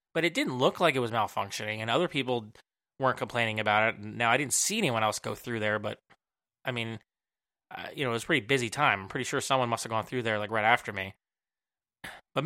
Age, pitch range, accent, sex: 20-39, 115-140 Hz, American, male